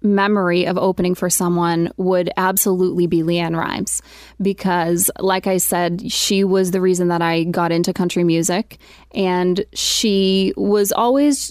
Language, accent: English, American